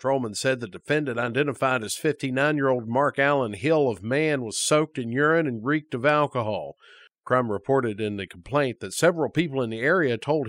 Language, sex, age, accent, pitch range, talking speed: English, male, 50-69, American, 120-150 Hz, 185 wpm